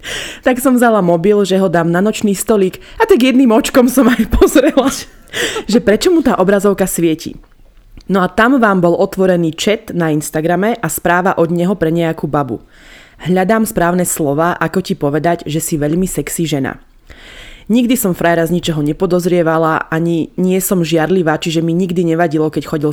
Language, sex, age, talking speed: Slovak, female, 20-39, 175 wpm